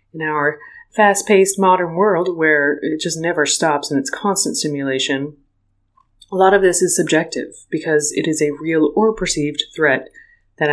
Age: 30-49